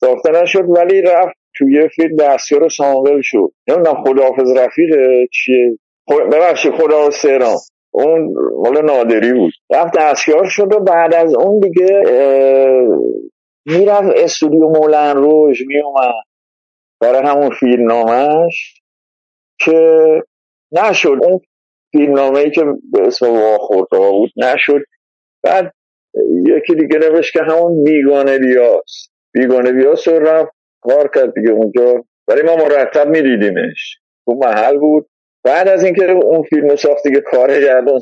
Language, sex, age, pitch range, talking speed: Persian, male, 50-69, 135-185 Hz, 130 wpm